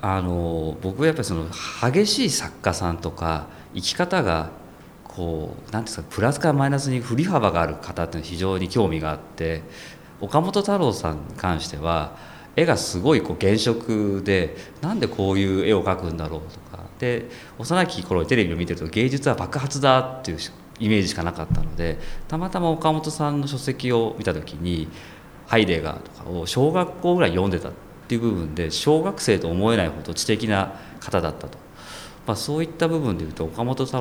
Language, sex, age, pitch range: Japanese, male, 40-59, 85-130 Hz